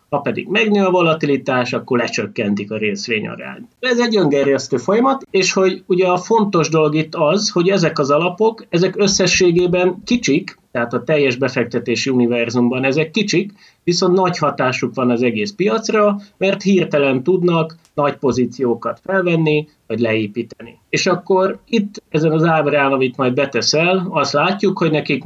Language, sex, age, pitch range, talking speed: Hungarian, male, 30-49, 120-180 Hz, 150 wpm